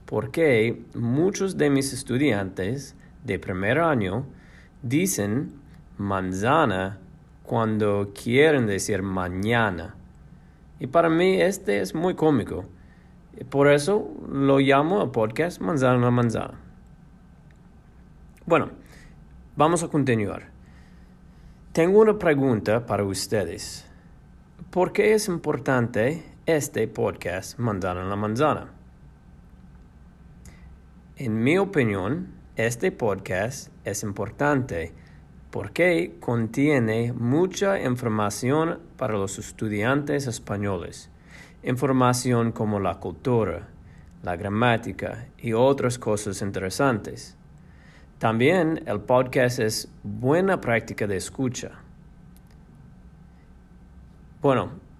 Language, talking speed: English, 90 wpm